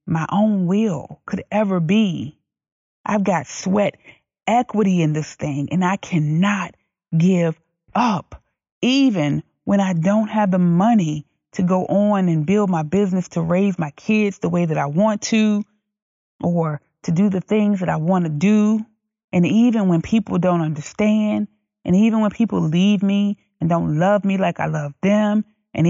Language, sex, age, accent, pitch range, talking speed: English, female, 30-49, American, 170-210 Hz, 170 wpm